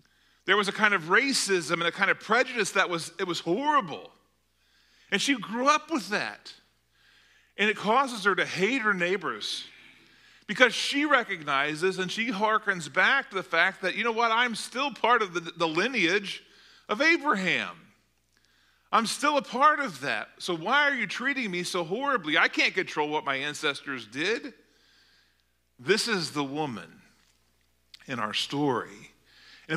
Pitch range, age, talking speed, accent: 145-220 Hz, 40-59, 165 wpm, American